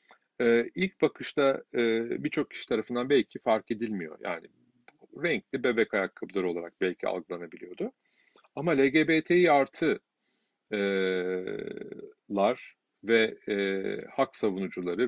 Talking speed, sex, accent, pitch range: 85 wpm, male, native, 100-155 Hz